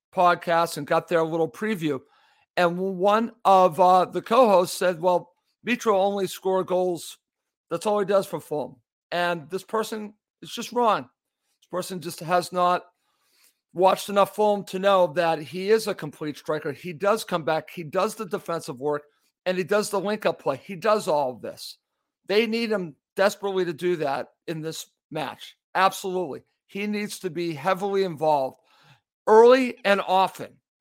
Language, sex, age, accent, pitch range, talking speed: English, male, 50-69, American, 170-200 Hz, 170 wpm